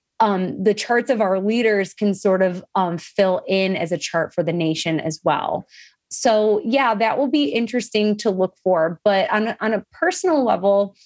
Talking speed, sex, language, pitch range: 195 wpm, female, English, 185-220 Hz